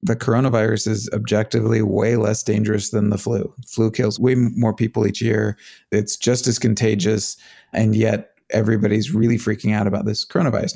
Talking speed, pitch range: 165 wpm, 105-120 Hz